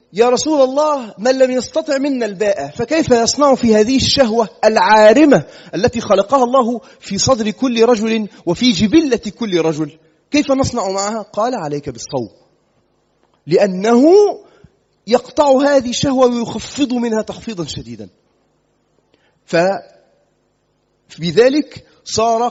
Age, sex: 30-49, male